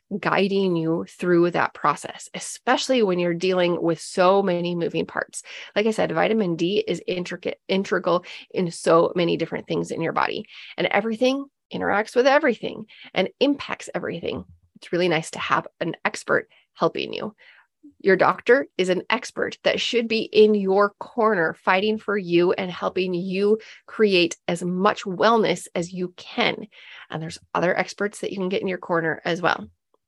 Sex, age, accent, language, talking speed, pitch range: female, 30-49, American, English, 170 wpm, 180-235 Hz